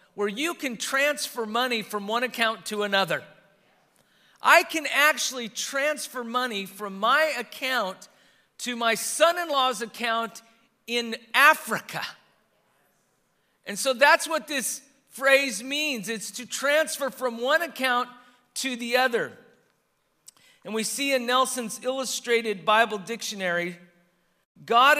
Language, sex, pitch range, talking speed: English, male, 205-260 Hz, 120 wpm